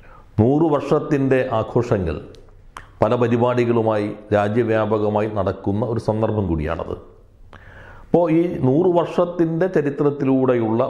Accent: native